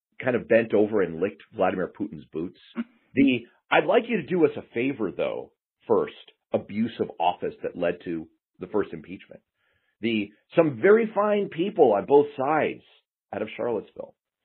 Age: 40-59